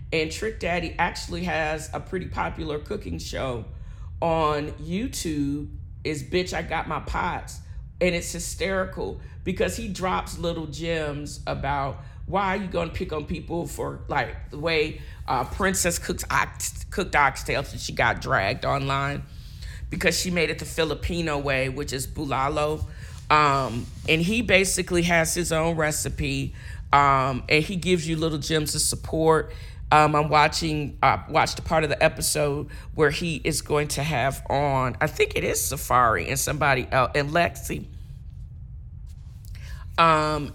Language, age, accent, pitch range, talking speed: English, 40-59, American, 140-170 Hz, 155 wpm